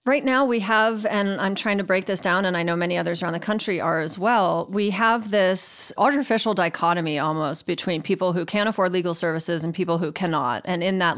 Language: English